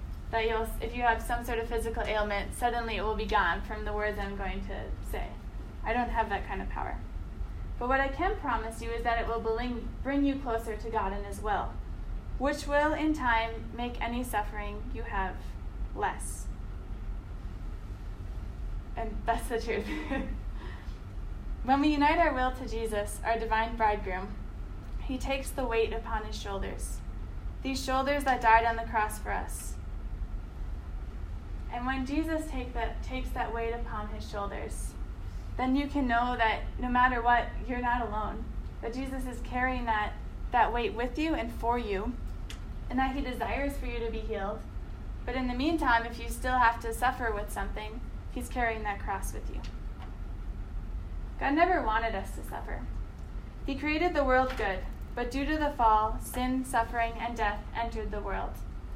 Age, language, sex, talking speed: 20-39, English, female, 170 wpm